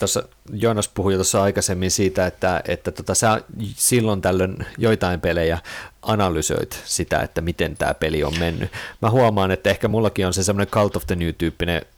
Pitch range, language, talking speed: 85-110 Hz, Finnish, 165 wpm